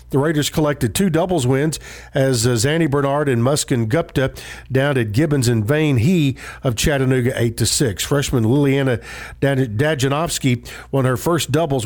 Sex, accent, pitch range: male, American, 125-160 Hz